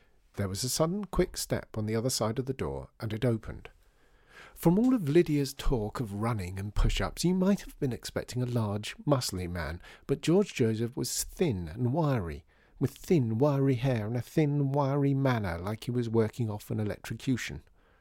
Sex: male